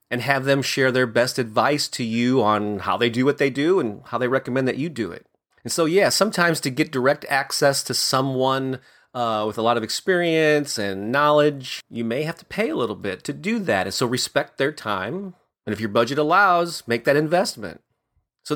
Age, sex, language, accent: 30-49, male, English, American